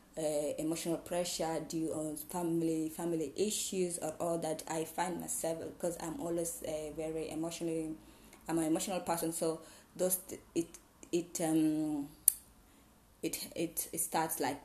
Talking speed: 145 wpm